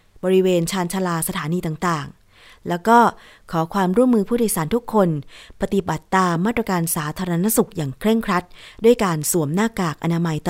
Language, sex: Thai, female